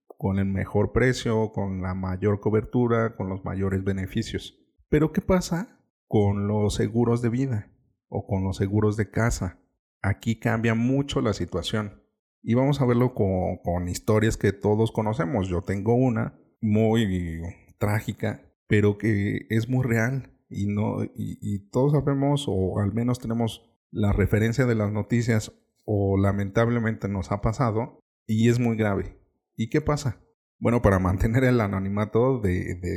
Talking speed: 150 wpm